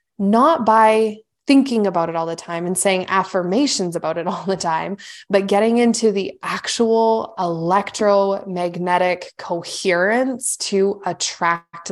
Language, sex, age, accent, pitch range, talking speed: English, female, 20-39, American, 190-240 Hz, 125 wpm